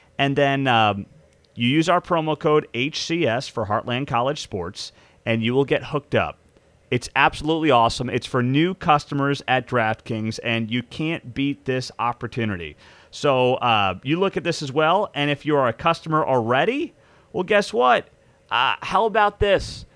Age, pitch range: 30-49, 125-165 Hz